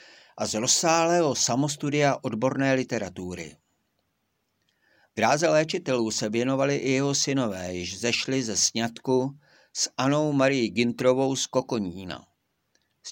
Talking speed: 115 wpm